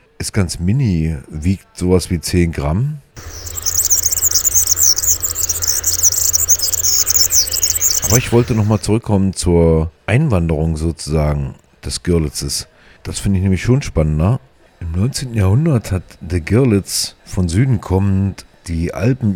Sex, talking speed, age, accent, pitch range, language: male, 110 wpm, 40-59, German, 85-105 Hz, German